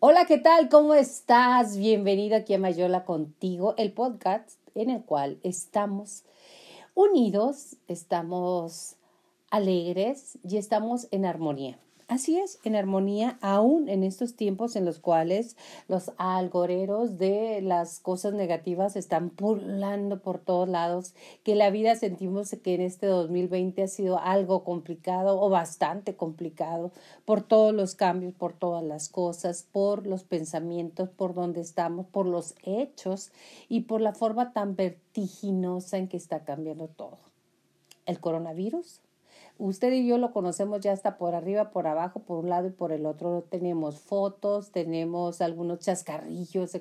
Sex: female